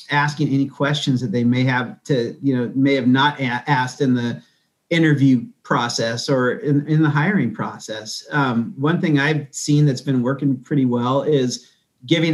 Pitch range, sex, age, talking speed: 130-155 Hz, male, 40-59, 175 wpm